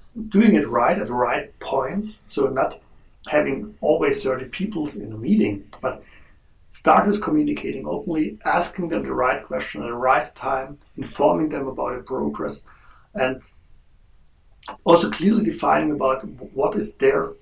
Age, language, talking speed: 60-79, English, 150 wpm